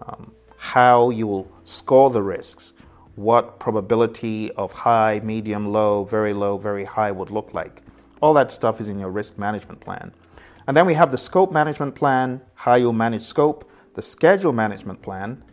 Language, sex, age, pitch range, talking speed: English, male, 30-49, 105-130 Hz, 175 wpm